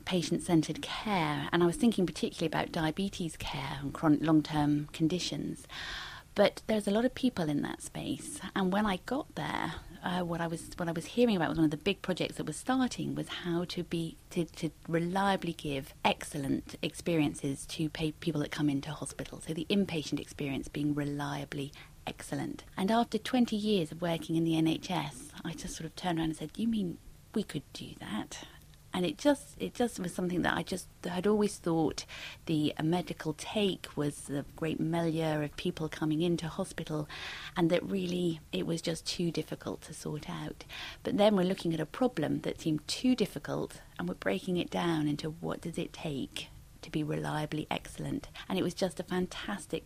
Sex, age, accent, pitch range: female, 30-49, British, 155-180 Hz